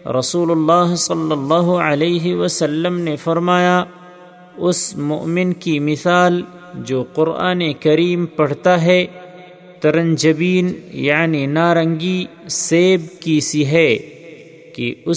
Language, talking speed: Urdu, 105 wpm